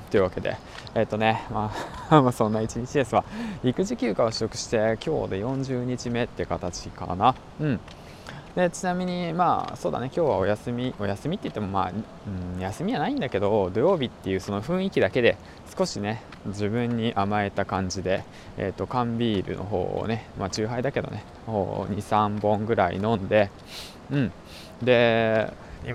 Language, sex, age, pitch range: Japanese, male, 20-39, 100-140 Hz